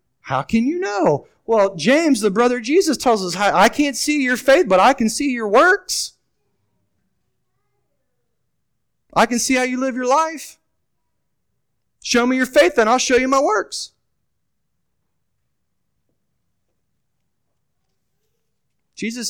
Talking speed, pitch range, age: 130 wpm, 155-245 Hz, 30-49